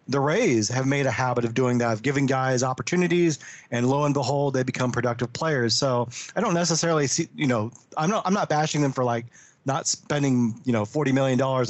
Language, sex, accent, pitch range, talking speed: English, male, American, 120-150 Hz, 220 wpm